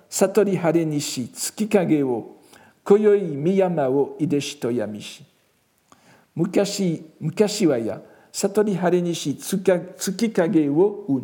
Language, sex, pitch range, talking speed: French, male, 130-180 Hz, 65 wpm